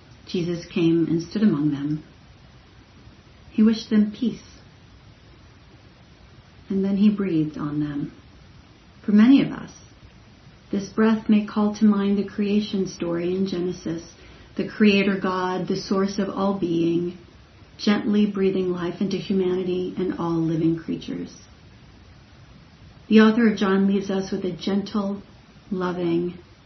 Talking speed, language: 130 wpm, English